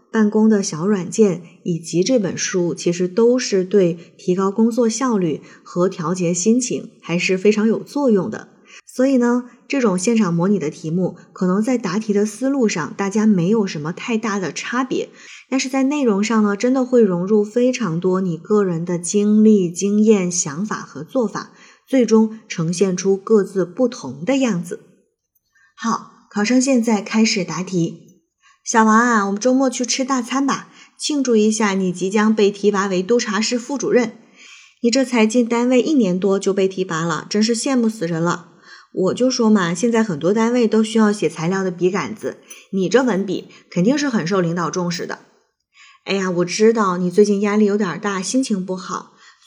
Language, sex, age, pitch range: Chinese, female, 20-39, 185-235 Hz